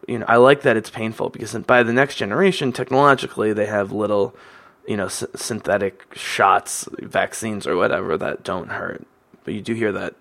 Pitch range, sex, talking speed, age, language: 105-135 Hz, male, 190 wpm, 20-39, English